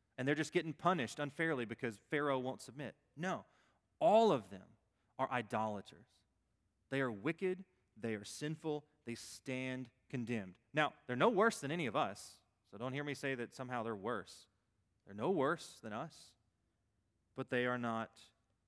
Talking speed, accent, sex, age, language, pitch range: 165 wpm, American, male, 30-49, English, 105-140 Hz